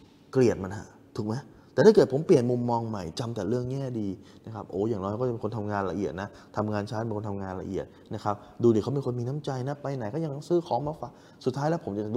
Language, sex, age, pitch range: Thai, male, 20-39, 95-120 Hz